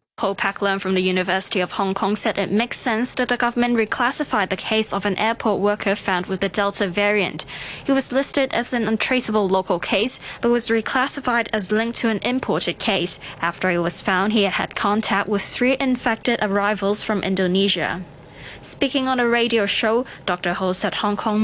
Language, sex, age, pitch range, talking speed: English, female, 20-39, 150-215 Hz, 190 wpm